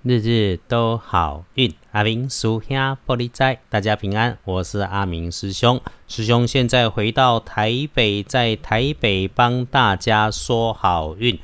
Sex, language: male, Chinese